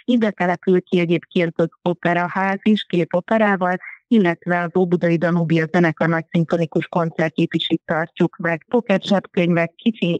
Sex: female